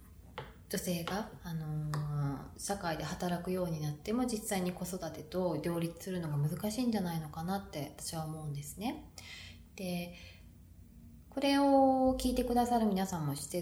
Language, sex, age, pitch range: Japanese, female, 20-39, 145-215 Hz